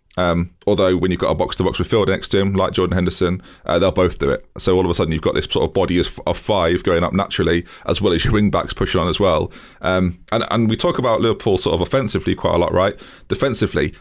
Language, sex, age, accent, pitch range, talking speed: English, male, 20-39, British, 90-100 Hz, 260 wpm